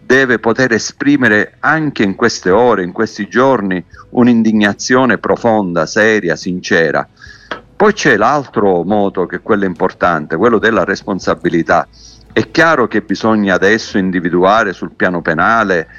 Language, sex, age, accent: Italian, male, 50-69, native